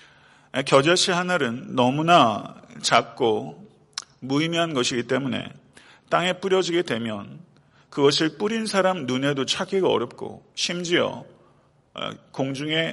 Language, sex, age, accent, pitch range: Korean, male, 40-59, native, 125-160 Hz